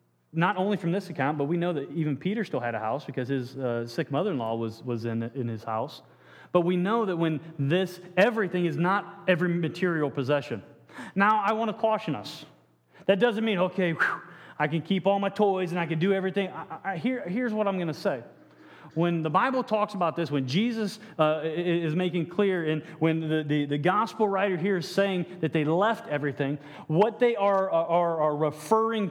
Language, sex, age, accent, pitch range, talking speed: English, male, 30-49, American, 155-215 Hz, 210 wpm